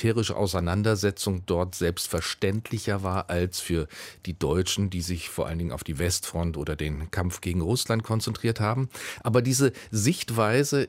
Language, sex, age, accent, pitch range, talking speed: German, male, 40-59, German, 90-110 Hz, 145 wpm